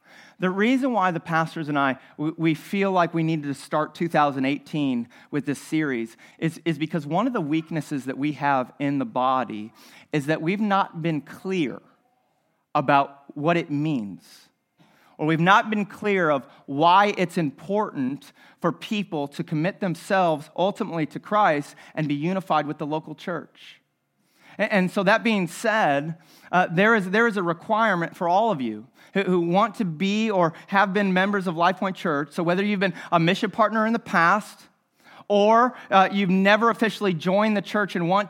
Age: 40-59